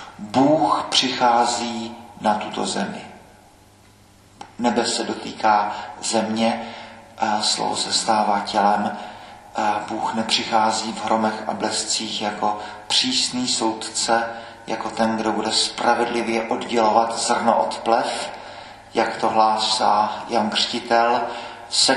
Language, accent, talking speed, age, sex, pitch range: Czech, native, 100 wpm, 40-59, male, 105-115 Hz